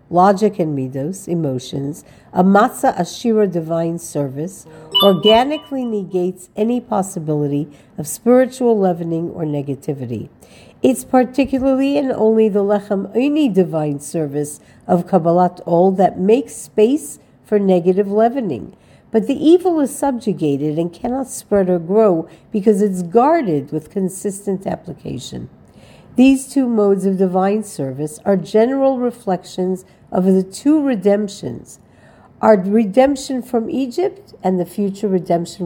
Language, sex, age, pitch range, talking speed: English, female, 50-69, 170-235 Hz, 125 wpm